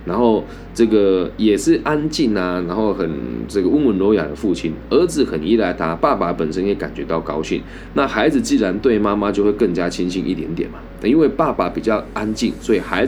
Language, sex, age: Chinese, male, 20-39